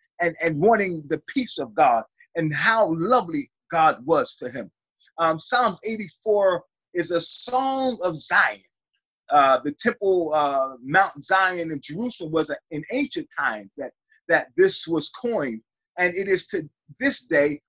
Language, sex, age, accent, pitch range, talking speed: English, male, 30-49, American, 160-230 Hz, 155 wpm